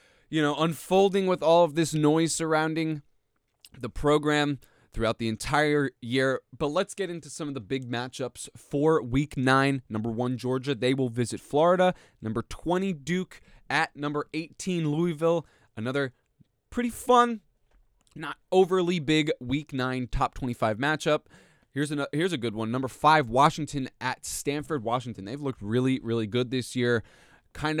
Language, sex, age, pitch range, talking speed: English, male, 20-39, 120-155 Hz, 155 wpm